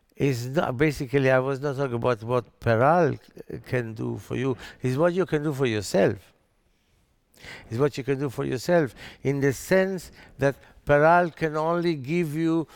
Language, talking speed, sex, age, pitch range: English, 170 wpm, male, 60-79, 125-155 Hz